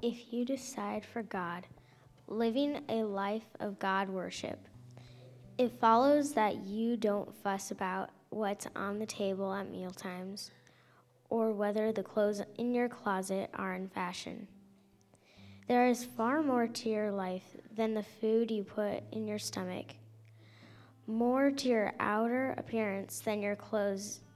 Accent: American